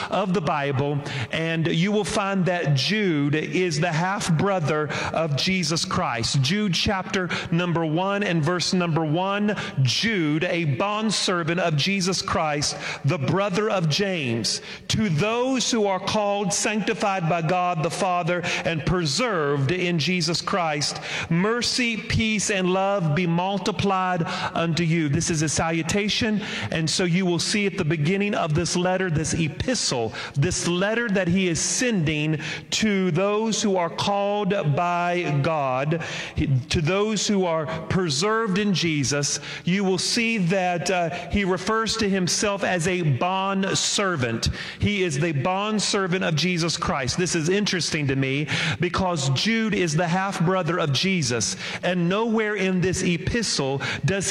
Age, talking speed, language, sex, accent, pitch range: 40-59, 145 wpm, English, male, American, 160-195 Hz